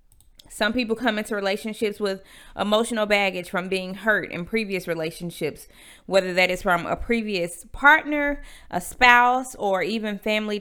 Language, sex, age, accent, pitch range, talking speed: English, female, 30-49, American, 175-220 Hz, 145 wpm